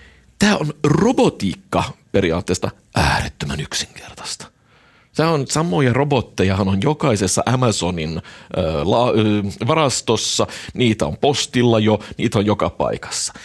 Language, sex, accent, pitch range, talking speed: Finnish, male, native, 95-135 Hz, 100 wpm